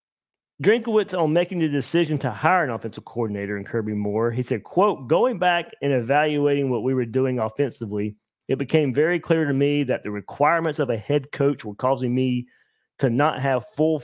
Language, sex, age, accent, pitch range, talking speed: English, male, 30-49, American, 115-155 Hz, 190 wpm